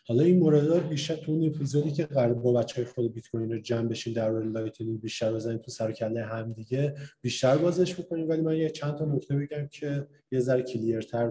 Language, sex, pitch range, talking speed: Persian, male, 125-170 Hz, 190 wpm